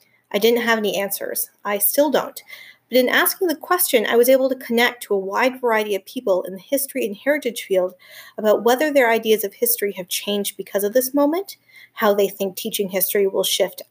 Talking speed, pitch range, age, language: 210 wpm, 195-255 Hz, 30-49, English